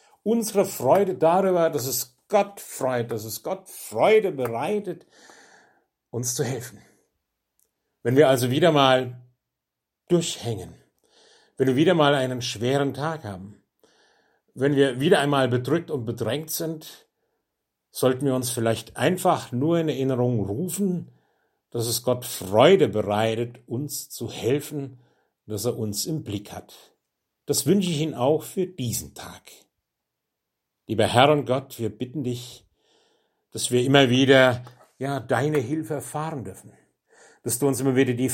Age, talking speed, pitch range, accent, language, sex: 60-79, 140 wpm, 120-155 Hz, German, German, male